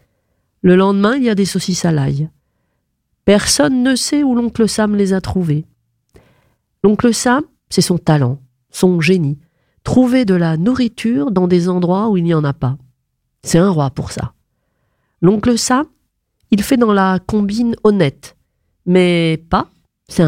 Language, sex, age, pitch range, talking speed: French, female, 40-59, 150-215 Hz, 160 wpm